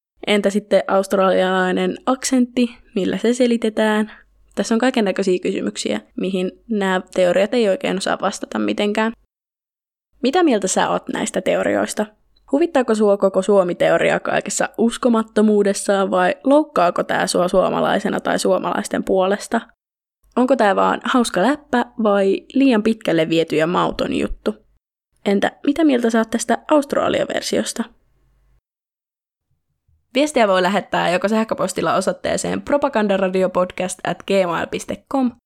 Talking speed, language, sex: 115 wpm, Finnish, female